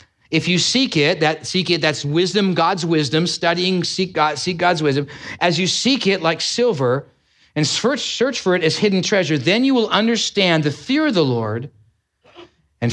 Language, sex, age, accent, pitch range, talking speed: English, male, 40-59, American, 140-195 Hz, 190 wpm